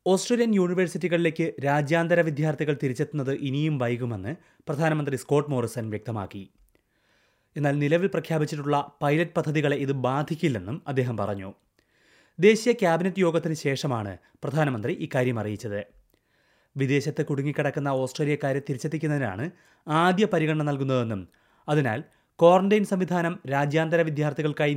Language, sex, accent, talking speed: Malayalam, male, native, 95 wpm